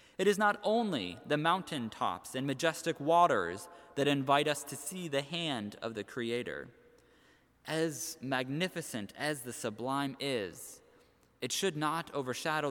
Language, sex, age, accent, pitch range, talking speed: English, male, 20-39, American, 135-185 Hz, 135 wpm